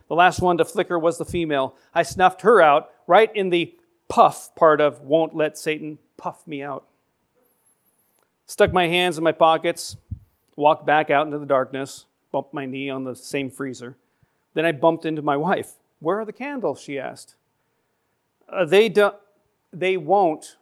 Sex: male